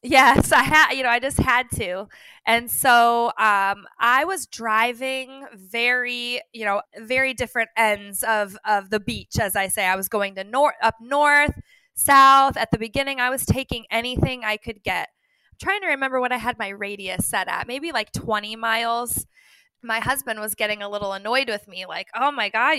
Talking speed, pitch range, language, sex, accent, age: 190 wpm, 210-265 Hz, English, female, American, 20-39